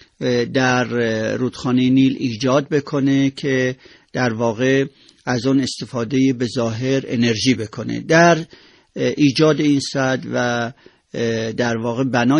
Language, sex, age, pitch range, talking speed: Persian, male, 50-69, 120-140 Hz, 110 wpm